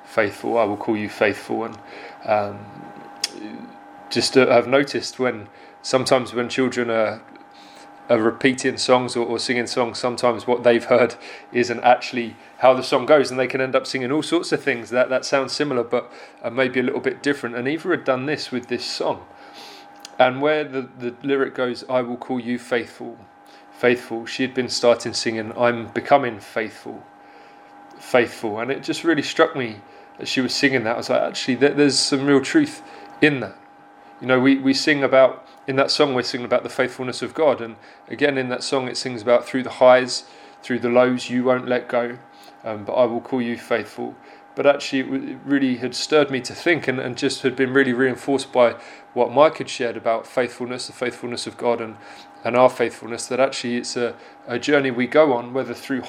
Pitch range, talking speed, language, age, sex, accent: 115-135 Hz, 200 wpm, English, 20-39, male, British